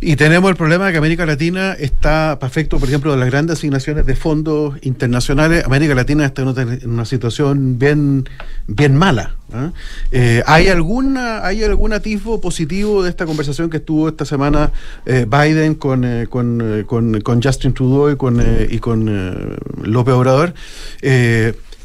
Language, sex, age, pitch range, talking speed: Spanish, male, 40-59, 135-170 Hz, 170 wpm